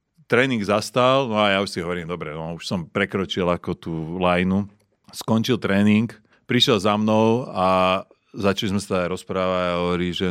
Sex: male